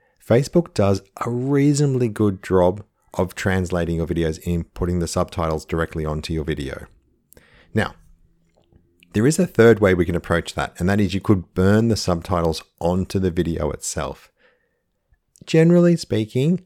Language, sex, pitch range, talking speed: English, male, 85-110 Hz, 150 wpm